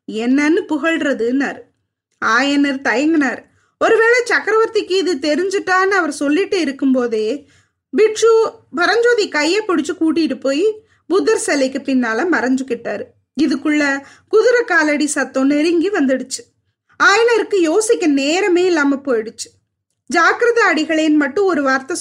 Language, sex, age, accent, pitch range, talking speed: Tamil, female, 20-39, native, 275-375 Hz, 105 wpm